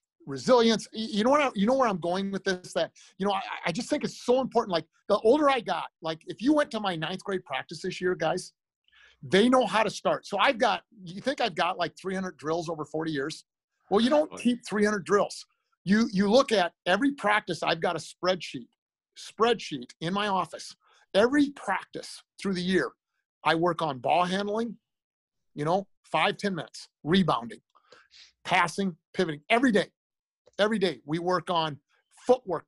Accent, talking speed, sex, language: American, 190 wpm, male, English